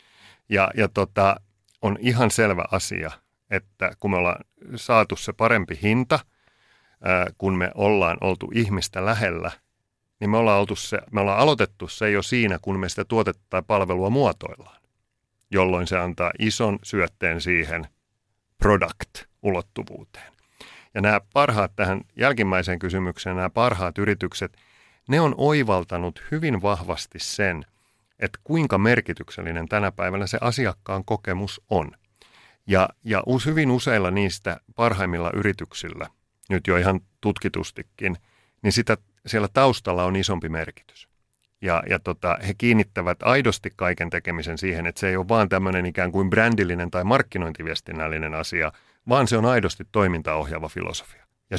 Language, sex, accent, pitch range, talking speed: Finnish, male, native, 90-110 Hz, 130 wpm